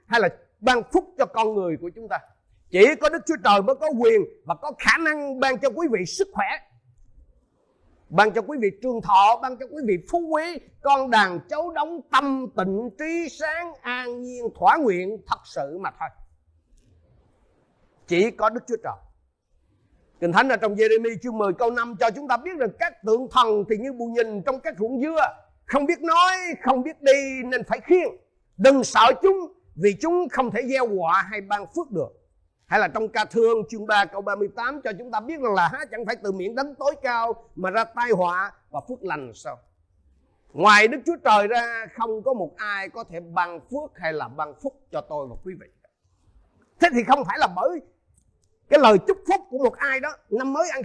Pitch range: 200-280 Hz